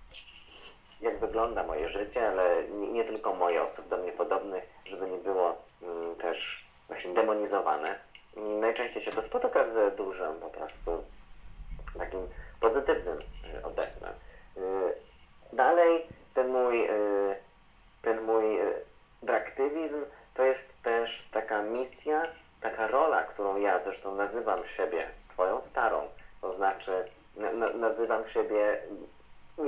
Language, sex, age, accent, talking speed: Polish, male, 30-49, native, 125 wpm